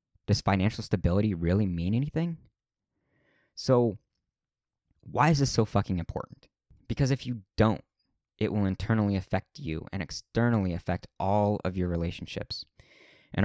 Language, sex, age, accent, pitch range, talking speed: English, male, 20-39, American, 90-110 Hz, 135 wpm